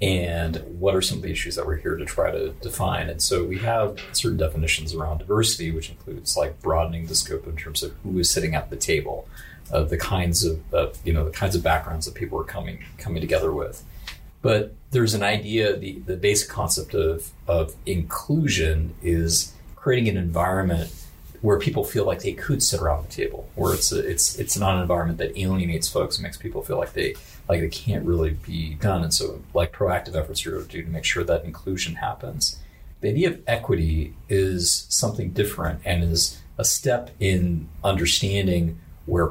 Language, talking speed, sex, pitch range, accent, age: English, 205 wpm, male, 80-100 Hz, American, 30-49